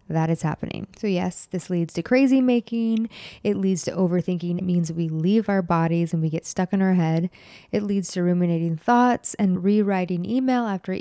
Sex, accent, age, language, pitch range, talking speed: female, American, 20-39, English, 170-220 Hz, 195 wpm